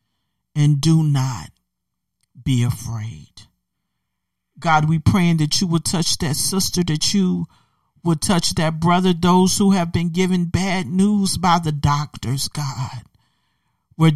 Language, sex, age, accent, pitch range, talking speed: English, male, 50-69, American, 155-230 Hz, 135 wpm